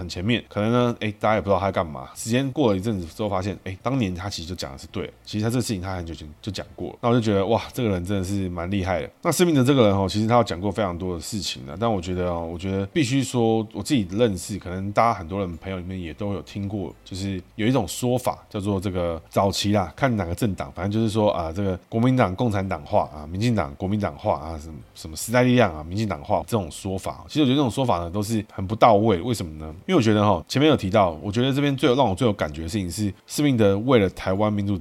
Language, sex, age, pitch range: Chinese, male, 20-39, 90-115 Hz